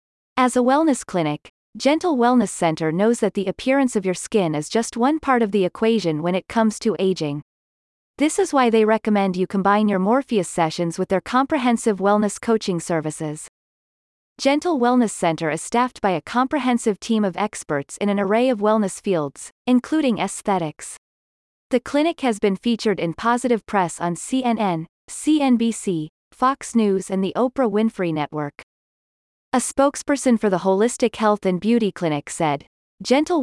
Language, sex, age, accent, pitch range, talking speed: English, female, 30-49, American, 180-245 Hz, 160 wpm